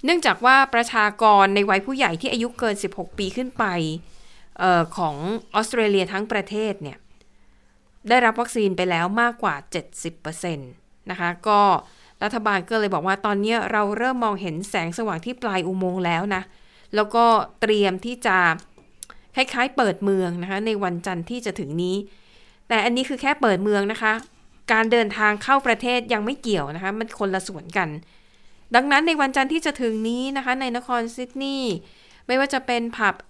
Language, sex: Thai, female